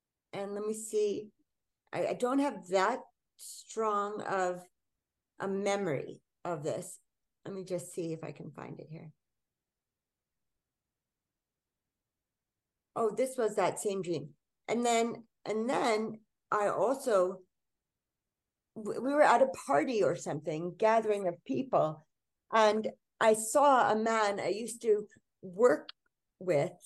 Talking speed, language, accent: 125 wpm, English, American